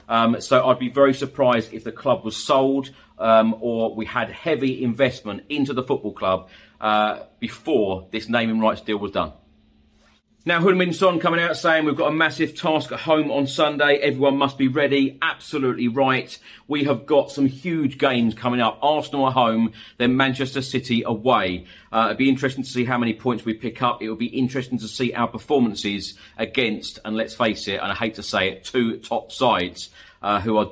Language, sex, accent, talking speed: English, male, British, 195 wpm